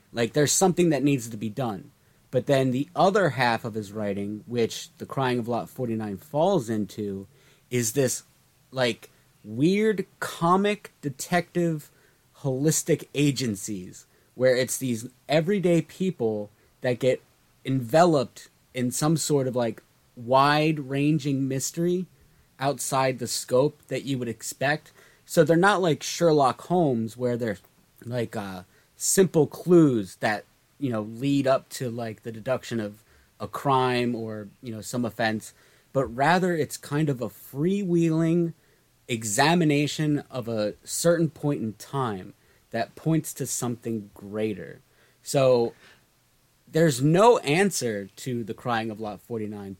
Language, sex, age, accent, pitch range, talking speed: English, male, 30-49, American, 115-150 Hz, 135 wpm